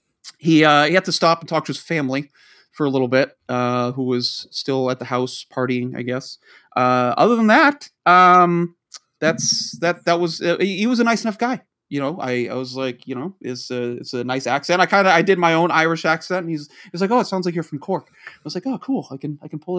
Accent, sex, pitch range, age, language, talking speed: American, male, 130-180 Hz, 30-49, English, 260 wpm